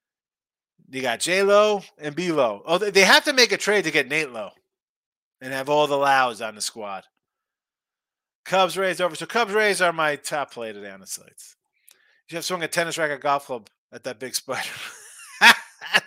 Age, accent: 30-49, American